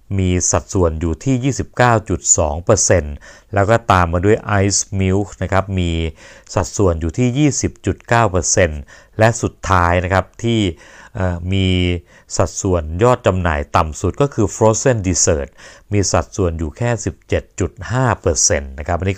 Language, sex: Thai, male